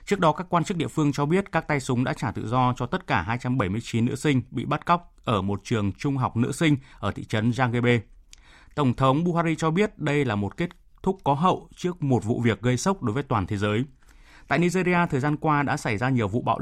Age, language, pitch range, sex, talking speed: 20-39, Vietnamese, 115-150 Hz, male, 255 wpm